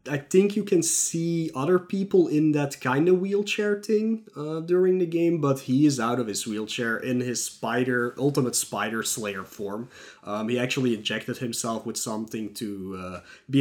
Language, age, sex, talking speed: English, 30-49, male, 180 wpm